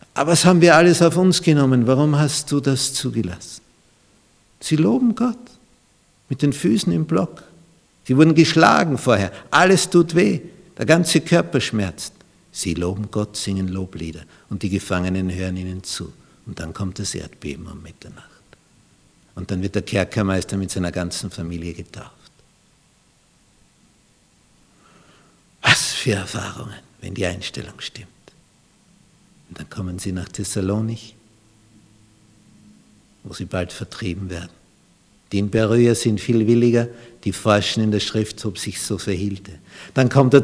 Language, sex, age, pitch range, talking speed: German, male, 60-79, 95-135 Hz, 140 wpm